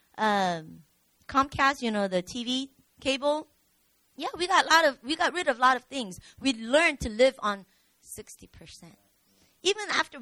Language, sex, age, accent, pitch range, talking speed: English, female, 20-39, American, 300-430 Hz, 175 wpm